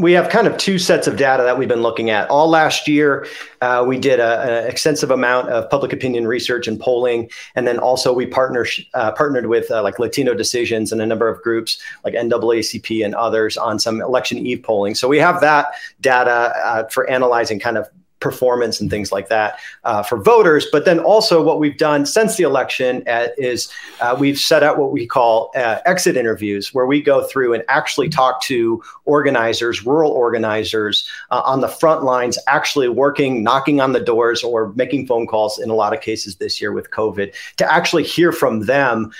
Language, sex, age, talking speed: English, male, 40-59, 200 wpm